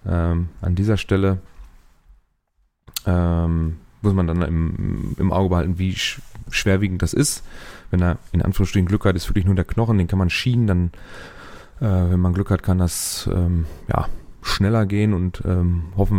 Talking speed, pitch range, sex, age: 170 wpm, 90-105 Hz, male, 30-49